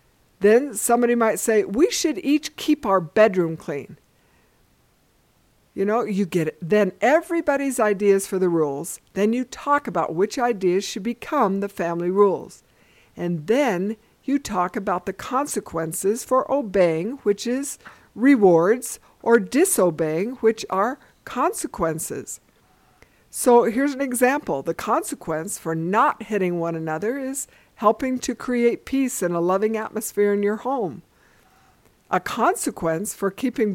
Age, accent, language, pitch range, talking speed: 60-79, American, English, 190-255 Hz, 135 wpm